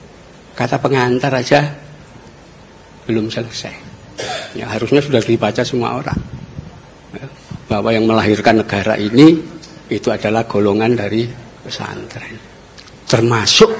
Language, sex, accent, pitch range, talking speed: Indonesian, male, native, 115-150 Hz, 100 wpm